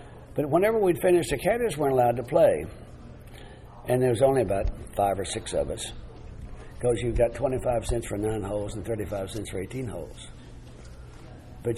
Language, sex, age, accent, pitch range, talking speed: English, male, 60-79, American, 110-130 Hz, 180 wpm